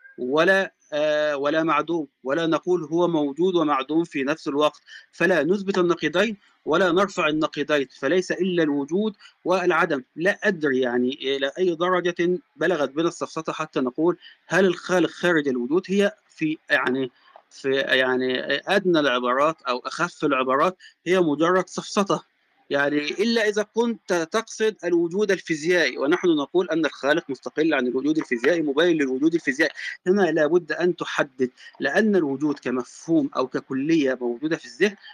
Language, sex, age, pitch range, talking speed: Arabic, male, 30-49, 140-180 Hz, 135 wpm